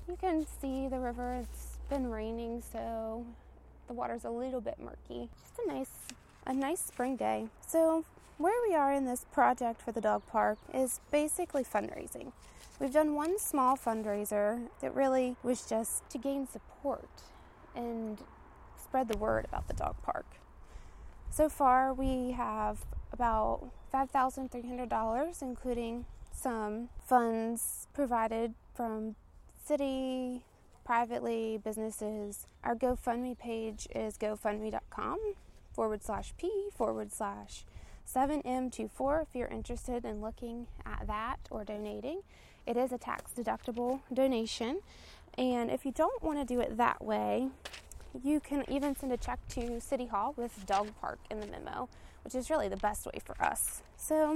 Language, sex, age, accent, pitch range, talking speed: English, female, 20-39, American, 225-275 Hz, 150 wpm